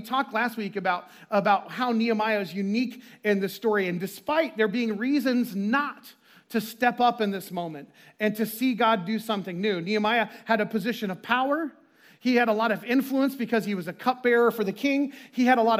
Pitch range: 210-250 Hz